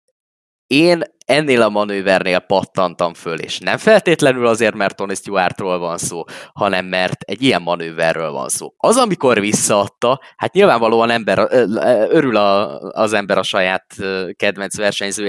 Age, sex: 20-39, male